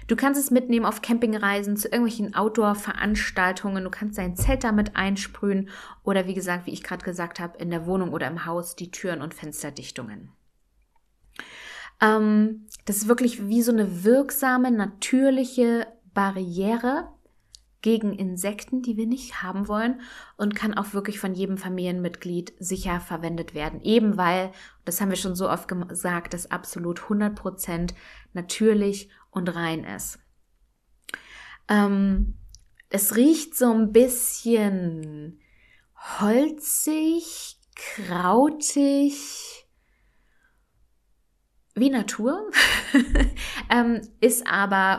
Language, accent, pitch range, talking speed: German, German, 175-225 Hz, 115 wpm